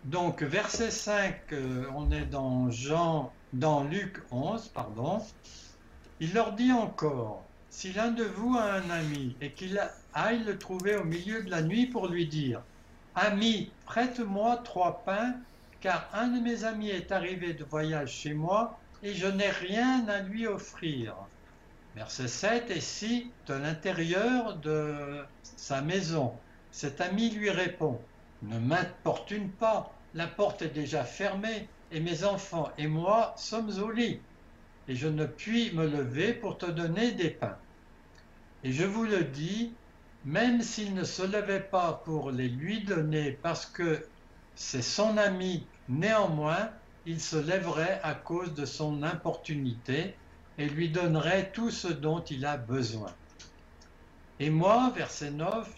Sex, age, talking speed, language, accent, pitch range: male, 60-79, 150 wpm, French, French, 145-205 Hz